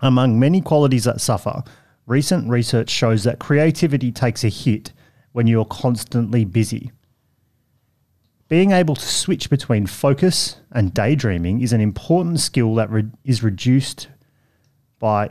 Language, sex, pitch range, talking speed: English, male, 110-140 Hz, 135 wpm